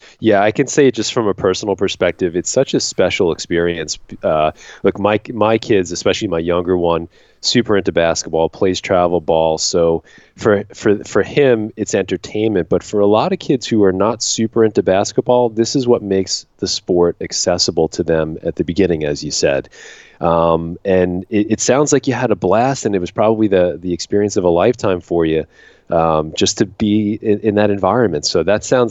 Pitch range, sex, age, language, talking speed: 85-110 Hz, male, 30-49, English, 200 wpm